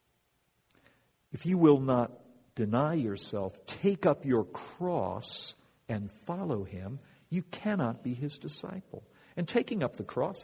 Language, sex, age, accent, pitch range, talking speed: English, male, 60-79, American, 100-145 Hz, 130 wpm